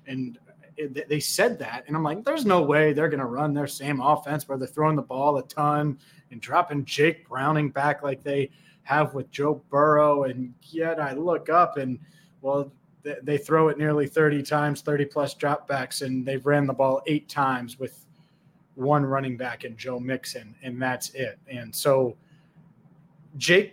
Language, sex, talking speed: English, male, 175 wpm